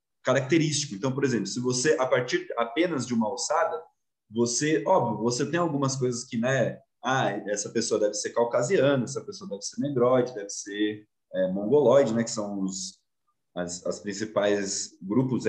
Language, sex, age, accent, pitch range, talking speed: Portuguese, male, 20-39, Brazilian, 120-165 Hz, 165 wpm